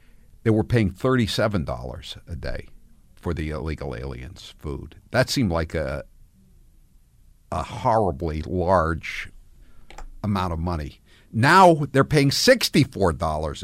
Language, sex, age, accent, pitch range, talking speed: English, male, 50-69, American, 100-155 Hz, 120 wpm